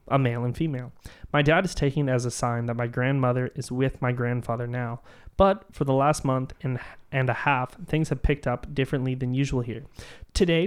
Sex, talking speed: male, 215 wpm